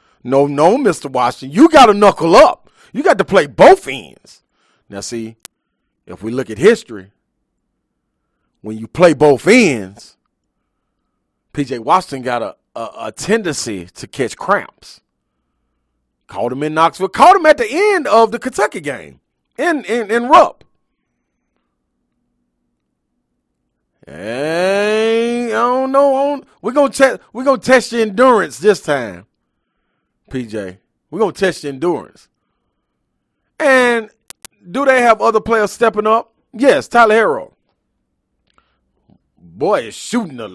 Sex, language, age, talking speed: male, English, 40-59, 130 wpm